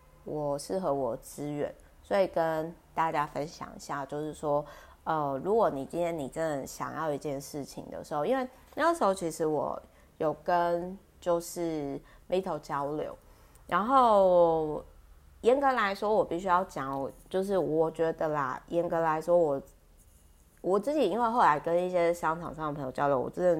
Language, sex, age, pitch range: Chinese, female, 30-49, 150-190 Hz